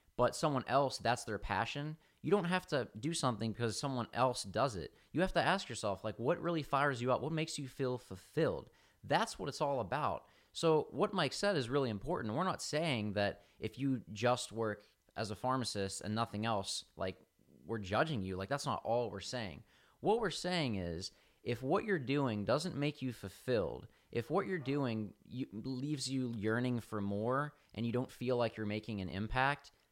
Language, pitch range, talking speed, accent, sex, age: English, 110-140 Hz, 200 wpm, American, male, 20-39